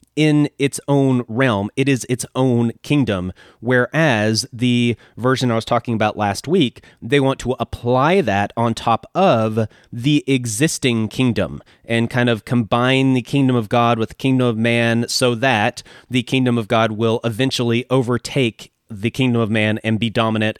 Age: 30-49